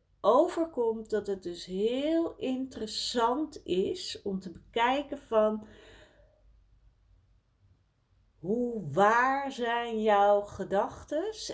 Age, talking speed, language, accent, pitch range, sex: 40-59, 85 wpm, Dutch, Dutch, 145-225 Hz, female